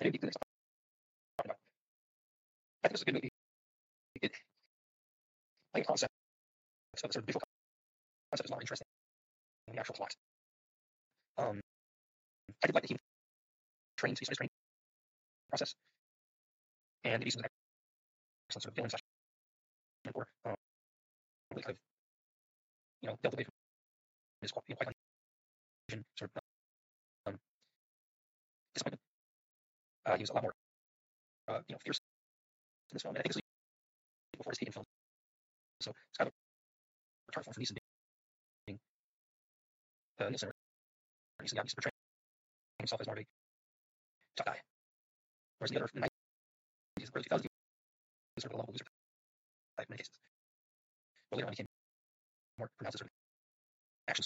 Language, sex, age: English, male, 30-49